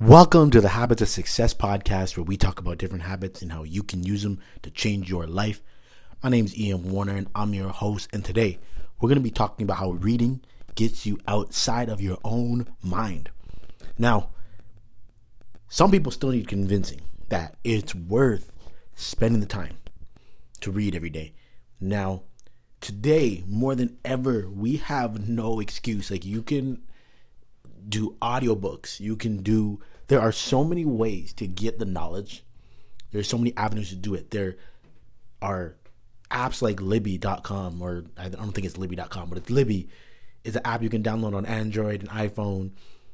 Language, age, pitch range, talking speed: English, 30-49, 95-115 Hz, 170 wpm